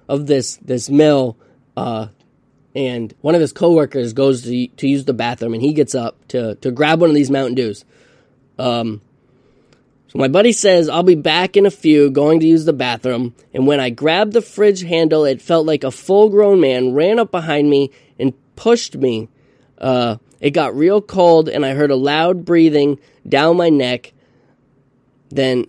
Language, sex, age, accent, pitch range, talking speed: English, male, 10-29, American, 130-155 Hz, 185 wpm